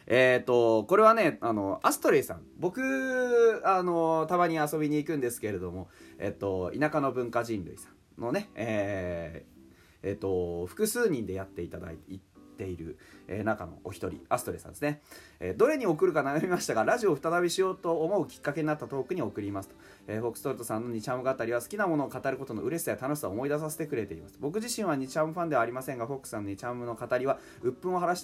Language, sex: Japanese, male